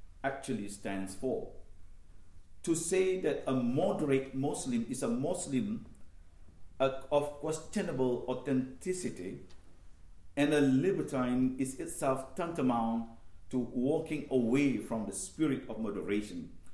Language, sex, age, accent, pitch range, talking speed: English, male, 50-69, Malaysian, 90-140 Hz, 105 wpm